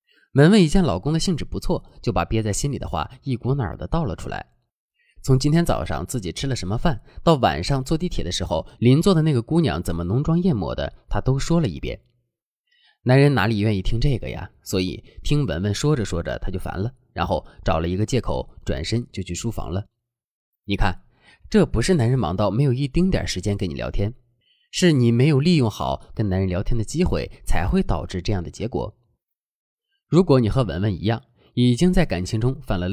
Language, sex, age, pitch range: Chinese, male, 20-39, 95-135 Hz